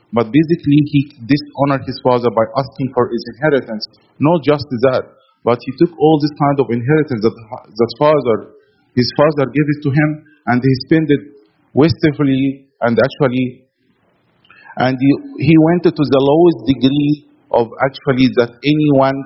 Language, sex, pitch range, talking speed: English, male, 125-155 Hz, 155 wpm